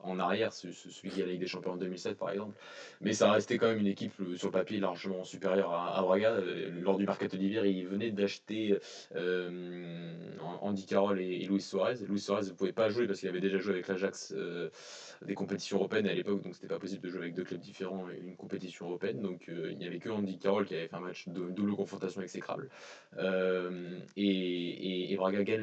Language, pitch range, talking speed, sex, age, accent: French, 95-100 Hz, 220 wpm, male, 20-39, French